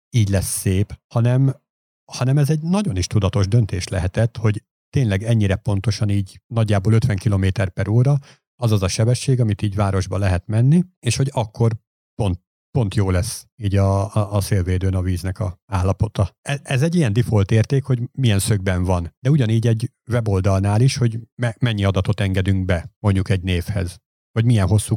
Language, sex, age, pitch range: Hungarian, male, 50-69, 100-120 Hz